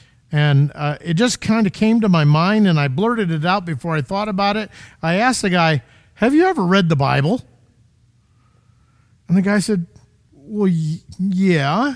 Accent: American